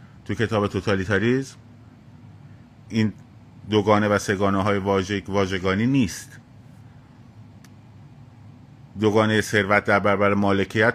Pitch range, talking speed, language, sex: 100-125 Hz, 80 wpm, Persian, male